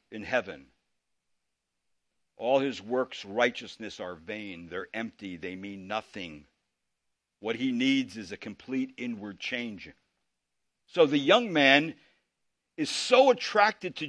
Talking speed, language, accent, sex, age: 125 wpm, English, American, male, 60-79